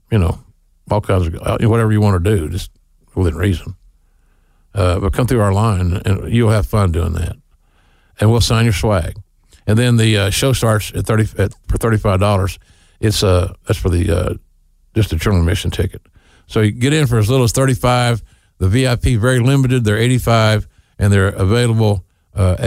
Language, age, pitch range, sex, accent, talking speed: English, 50-69, 90-115 Hz, male, American, 200 wpm